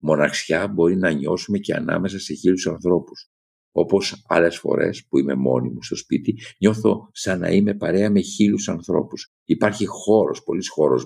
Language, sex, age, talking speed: Greek, male, 50-69, 165 wpm